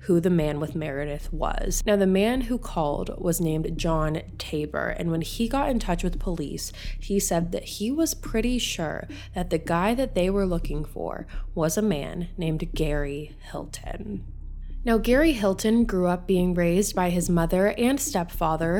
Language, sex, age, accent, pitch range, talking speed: English, female, 20-39, American, 160-210 Hz, 180 wpm